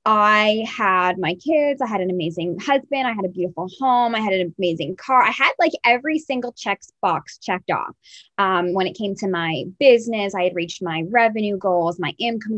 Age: 20-39